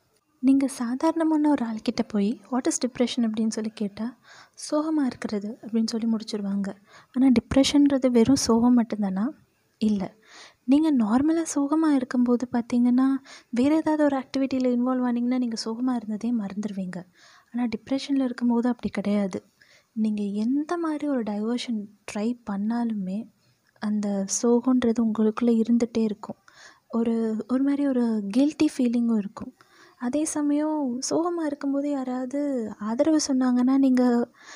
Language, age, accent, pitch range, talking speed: Tamil, 20-39, native, 225-270 Hz, 120 wpm